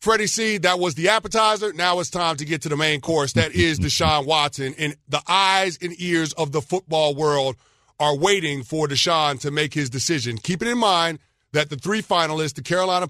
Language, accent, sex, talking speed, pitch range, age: English, American, male, 210 wpm, 135-175 Hz, 40-59